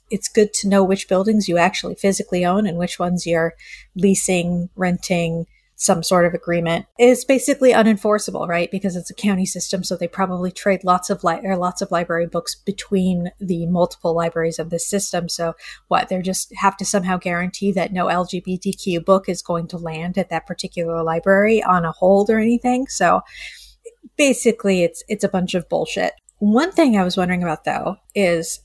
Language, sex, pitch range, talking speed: English, female, 170-205 Hz, 185 wpm